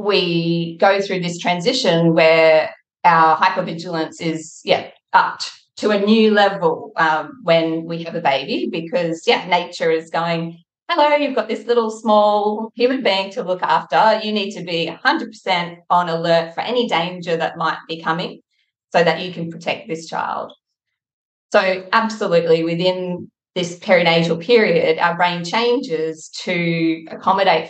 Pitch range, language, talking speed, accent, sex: 165-205 Hz, English, 150 wpm, Australian, female